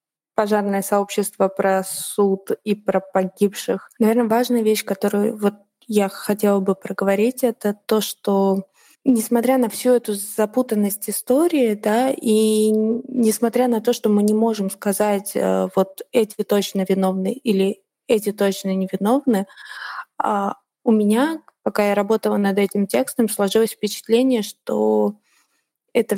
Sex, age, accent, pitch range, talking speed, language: female, 20-39, native, 195-230 Hz, 125 wpm, Russian